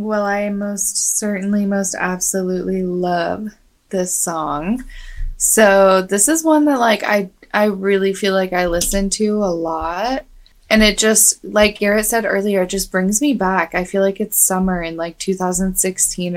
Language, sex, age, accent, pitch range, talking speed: English, female, 20-39, American, 180-220 Hz, 165 wpm